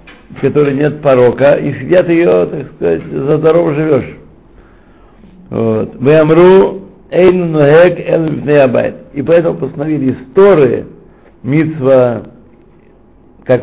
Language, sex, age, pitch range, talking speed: Russian, male, 60-79, 120-155 Hz, 85 wpm